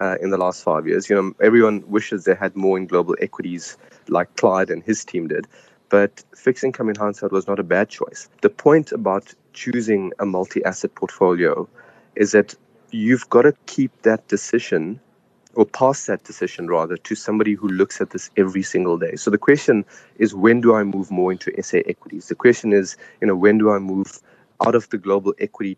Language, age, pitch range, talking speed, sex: English, 30-49, 95-110 Hz, 200 wpm, male